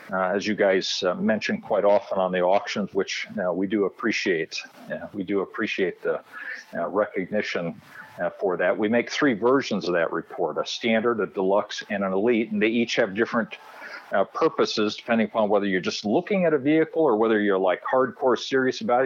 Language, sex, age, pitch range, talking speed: English, male, 50-69, 110-145 Hz, 200 wpm